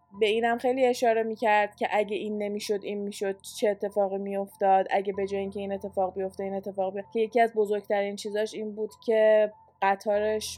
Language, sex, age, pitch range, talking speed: Persian, female, 20-39, 205-240 Hz, 195 wpm